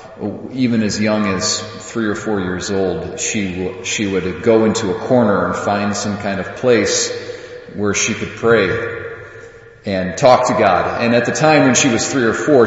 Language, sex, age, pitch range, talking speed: English, male, 40-59, 100-115 Hz, 195 wpm